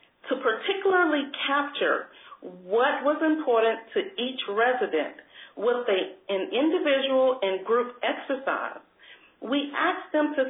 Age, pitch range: 40-59, 215-310 Hz